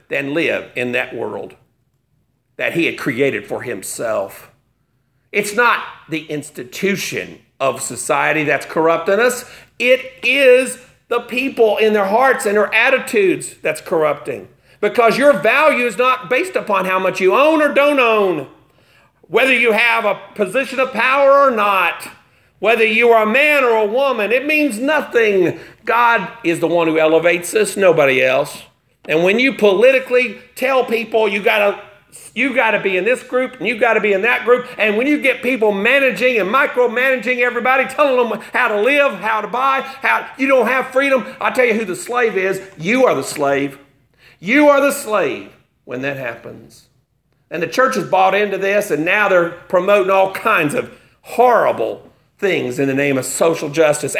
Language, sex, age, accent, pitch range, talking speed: English, male, 50-69, American, 190-260 Hz, 175 wpm